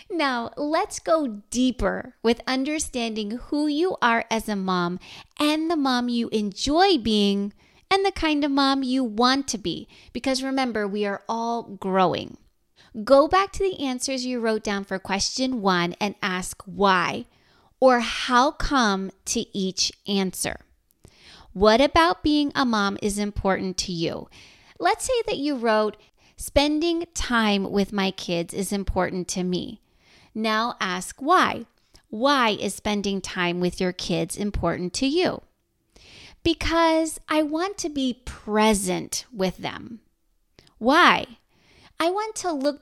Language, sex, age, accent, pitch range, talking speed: English, female, 30-49, American, 200-285 Hz, 145 wpm